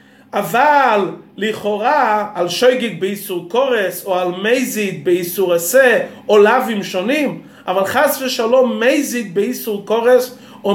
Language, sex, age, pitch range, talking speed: Hebrew, male, 30-49, 215-265 Hz, 110 wpm